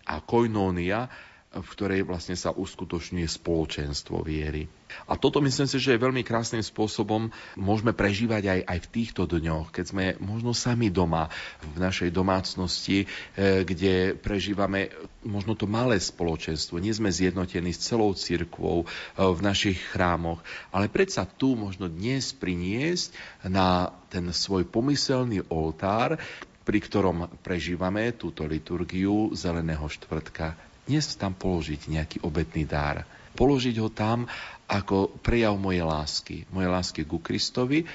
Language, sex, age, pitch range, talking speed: Slovak, male, 40-59, 85-115 Hz, 135 wpm